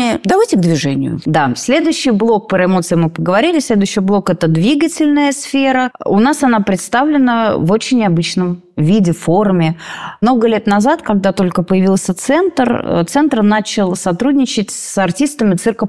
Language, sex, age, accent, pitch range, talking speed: Russian, female, 30-49, native, 180-240 Hz, 145 wpm